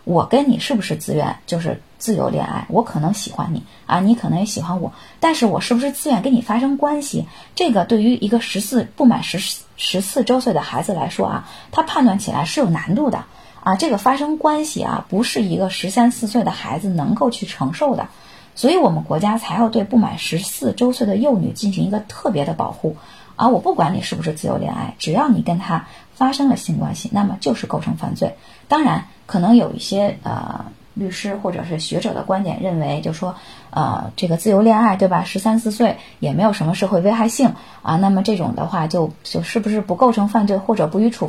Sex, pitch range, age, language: female, 185-240 Hz, 20-39, Chinese